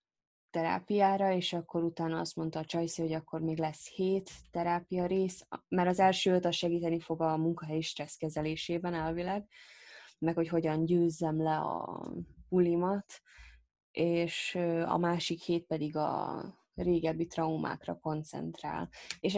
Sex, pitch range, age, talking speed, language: female, 155-175 Hz, 20-39, 135 wpm, Hungarian